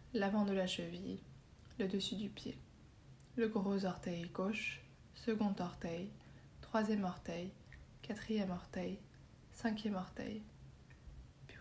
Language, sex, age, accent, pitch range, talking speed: French, female, 20-39, French, 185-215 Hz, 110 wpm